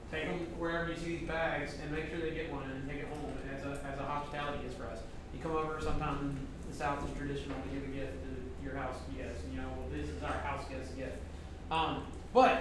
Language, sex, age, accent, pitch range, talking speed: English, male, 30-49, American, 145-180 Hz, 255 wpm